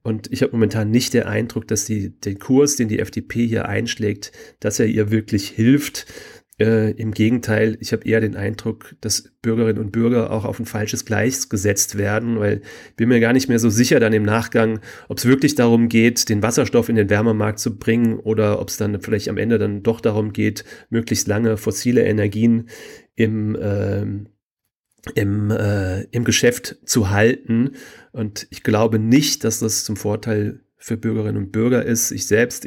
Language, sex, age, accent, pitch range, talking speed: German, male, 30-49, German, 105-115 Hz, 185 wpm